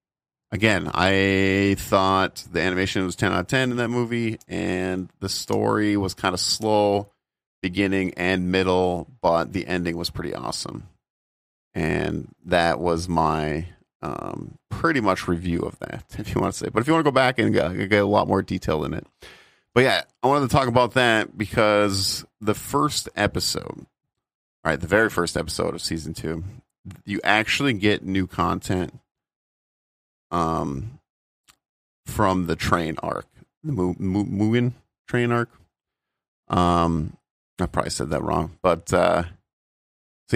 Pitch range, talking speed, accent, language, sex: 85-110 Hz, 155 wpm, American, English, male